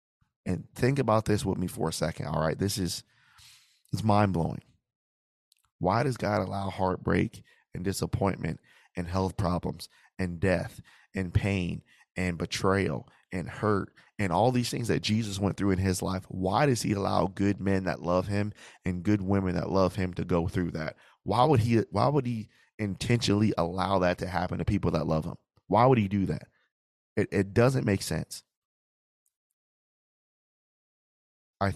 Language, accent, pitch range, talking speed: English, American, 90-105 Hz, 170 wpm